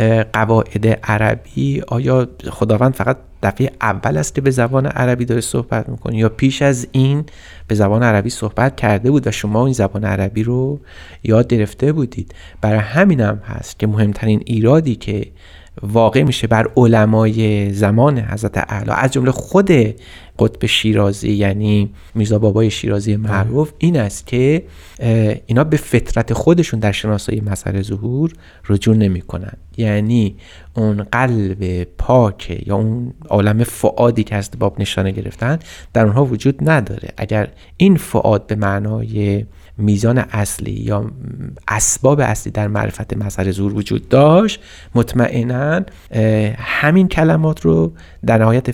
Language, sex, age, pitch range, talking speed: Persian, male, 30-49, 105-125 Hz, 135 wpm